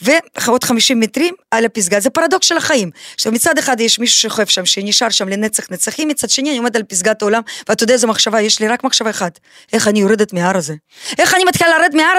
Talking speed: 220 wpm